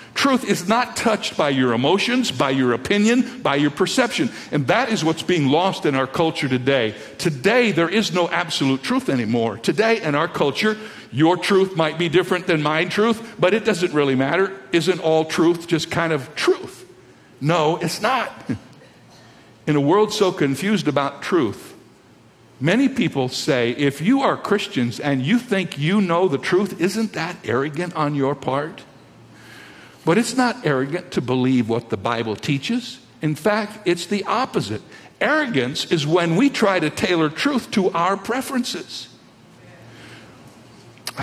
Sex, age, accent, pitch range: male, 60-79, American, 135-200 Hz